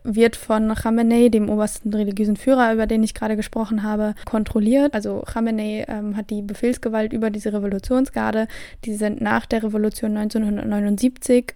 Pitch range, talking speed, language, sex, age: 215-245 Hz, 150 wpm, German, female, 10-29